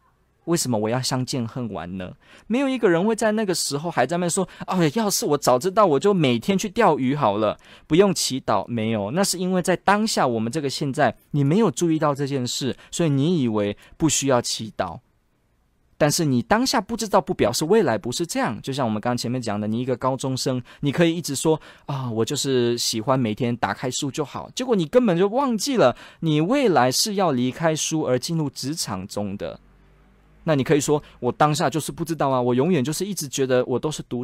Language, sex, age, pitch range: Chinese, male, 20-39, 120-175 Hz